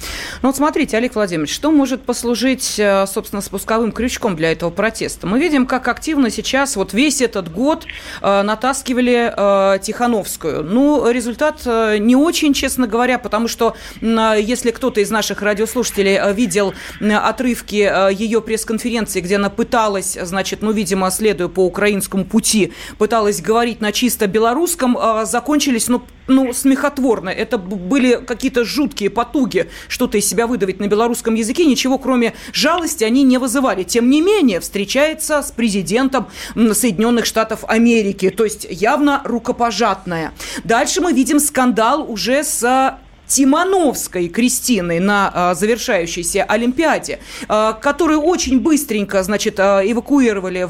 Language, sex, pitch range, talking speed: Russian, female, 210-265 Hz, 125 wpm